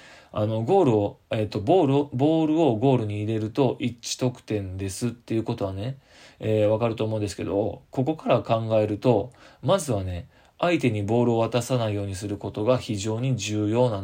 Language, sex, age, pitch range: Japanese, male, 20-39, 105-125 Hz